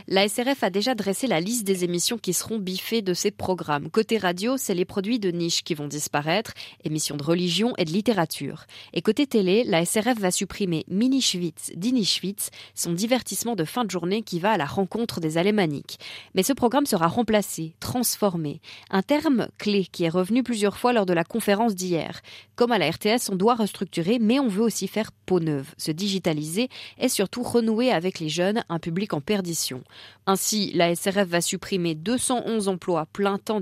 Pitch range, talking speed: 170-220 Hz, 190 wpm